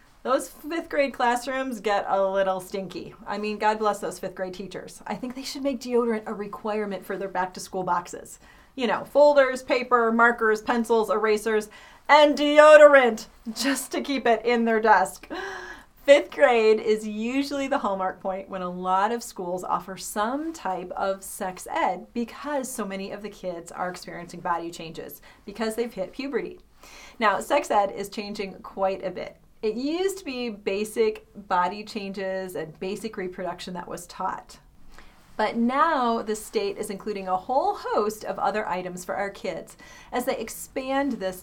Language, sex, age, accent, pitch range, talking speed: English, female, 30-49, American, 190-255 Hz, 170 wpm